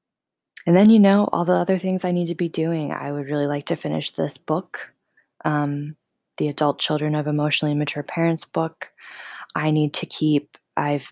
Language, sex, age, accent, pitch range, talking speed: English, female, 20-39, American, 145-160 Hz, 190 wpm